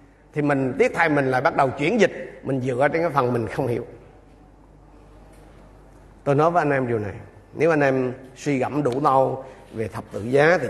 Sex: male